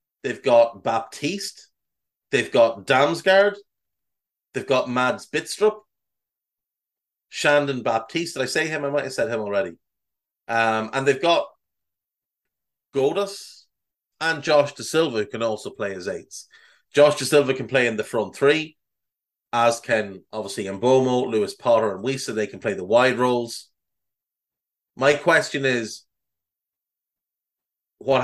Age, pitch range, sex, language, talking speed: 30-49, 110-145 Hz, male, English, 135 wpm